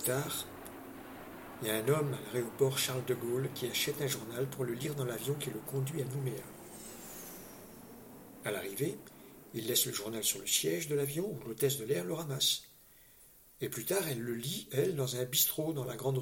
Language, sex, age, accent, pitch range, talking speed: French, male, 50-69, French, 130-160 Hz, 210 wpm